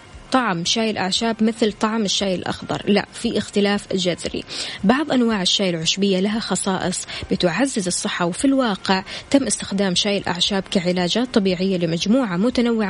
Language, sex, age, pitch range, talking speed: Arabic, female, 20-39, 185-225 Hz, 135 wpm